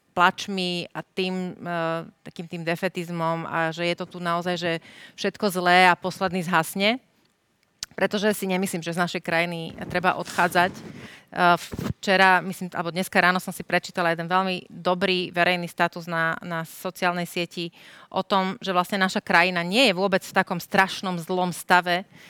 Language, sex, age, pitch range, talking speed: Slovak, female, 30-49, 175-195 Hz, 160 wpm